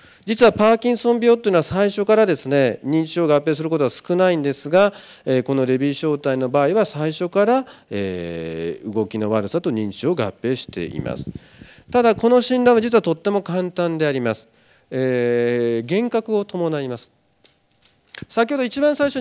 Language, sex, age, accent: Japanese, male, 40-59, native